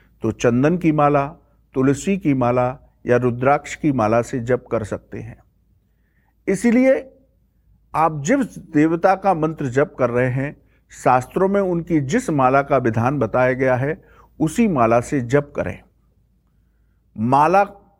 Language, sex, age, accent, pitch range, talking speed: English, male, 50-69, Indian, 125-175 Hz, 140 wpm